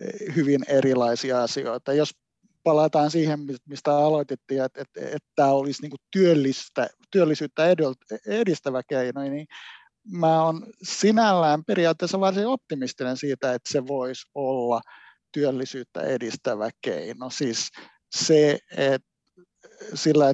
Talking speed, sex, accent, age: 105 wpm, male, native, 60-79